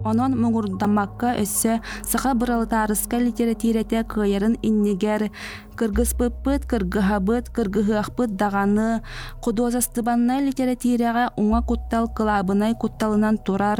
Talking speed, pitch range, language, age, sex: 115 wpm, 210-235 Hz, Russian, 20-39, female